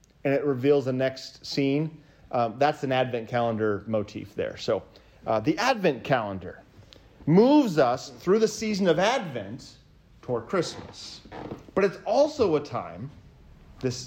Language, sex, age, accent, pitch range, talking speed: English, male, 30-49, American, 130-205 Hz, 140 wpm